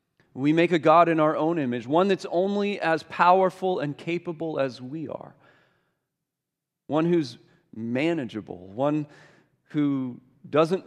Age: 40-59